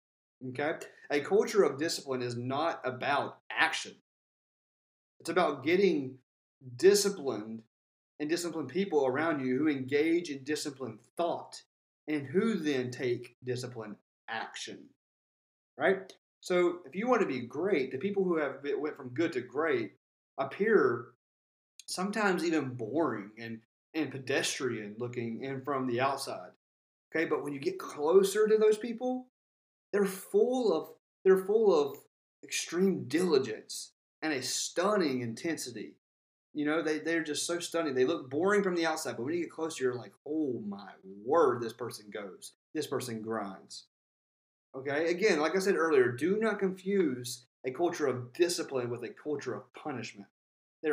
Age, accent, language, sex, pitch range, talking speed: 30-49, American, English, male, 125-195 Hz, 150 wpm